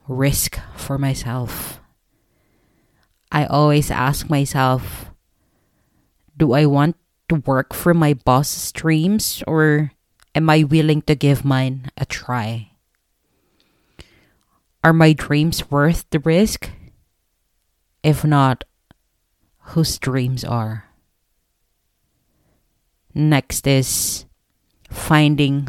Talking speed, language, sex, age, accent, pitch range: 90 wpm, English, female, 20-39, Filipino, 125-155 Hz